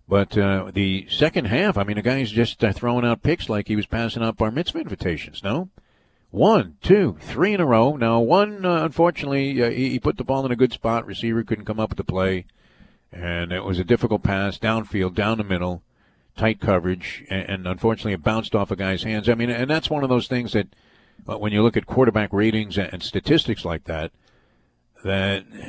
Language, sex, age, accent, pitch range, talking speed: English, male, 50-69, American, 100-130 Hz, 215 wpm